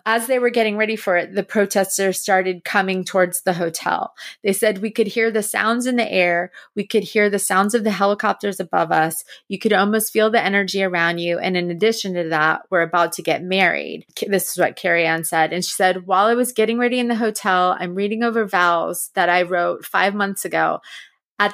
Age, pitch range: 30-49, 180-205 Hz